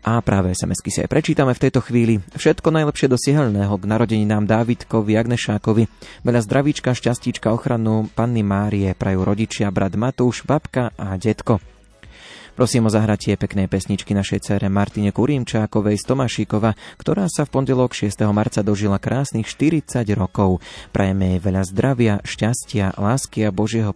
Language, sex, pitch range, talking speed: Slovak, male, 100-120 Hz, 150 wpm